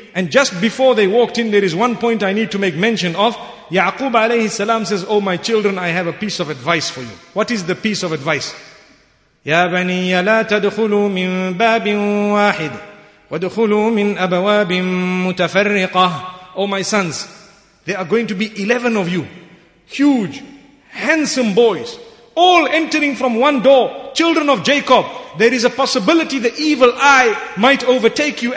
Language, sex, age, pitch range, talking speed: English, male, 50-69, 195-265 Hz, 160 wpm